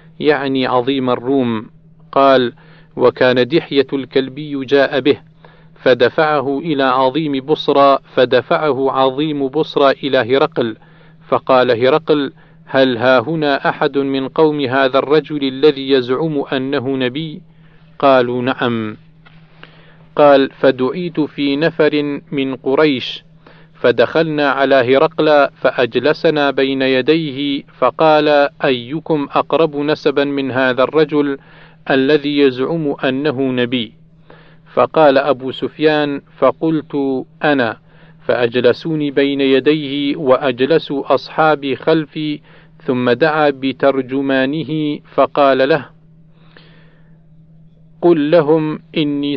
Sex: male